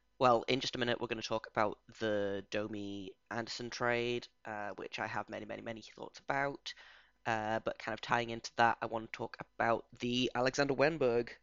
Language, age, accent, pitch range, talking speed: English, 10-29, British, 115-125 Hz, 195 wpm